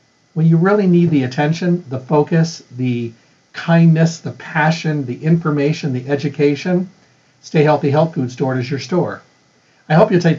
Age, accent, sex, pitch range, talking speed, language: 50-69, American, male, 135-175 Hz, 160 wpm, English